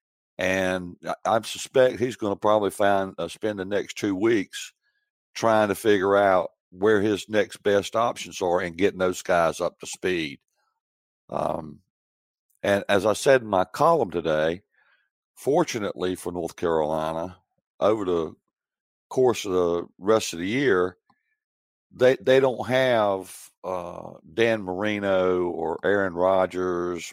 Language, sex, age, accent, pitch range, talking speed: English, male, 60-79, American, 90-115 Hz, 135 wpm